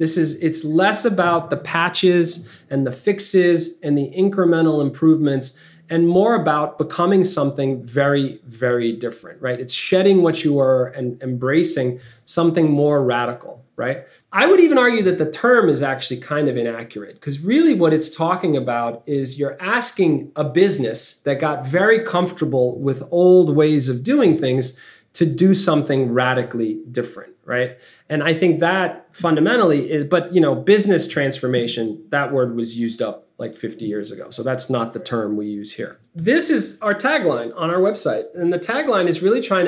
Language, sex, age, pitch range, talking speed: English, male, 30-49, 130-175 Hz, 170 wpm